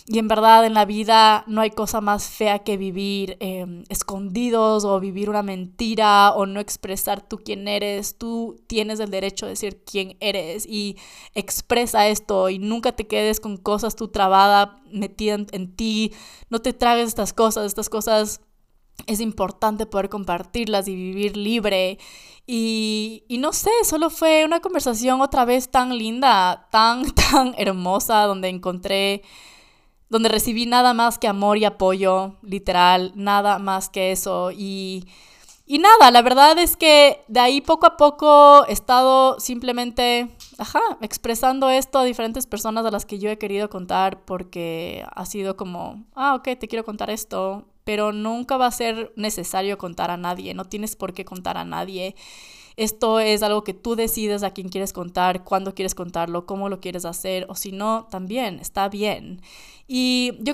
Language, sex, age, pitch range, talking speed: Spanish, female, 20-39, 195-230 Hz, 170 wpm